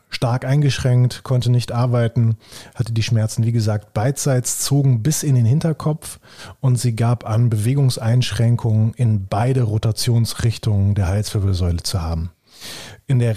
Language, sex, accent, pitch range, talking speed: German, male, German, 110-135 Hz, 135 wpm